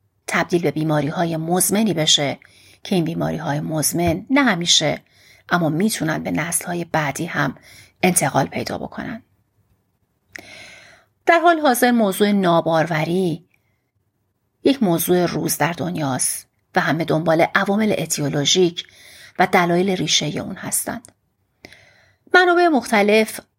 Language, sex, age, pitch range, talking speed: Persian, female, 40-59, 155-195 Hz, 110 wpm